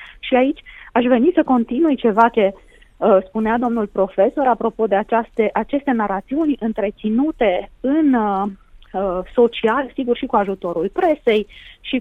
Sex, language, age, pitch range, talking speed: female, Romanian, 30-49, 205-260 Hz, 140 wpm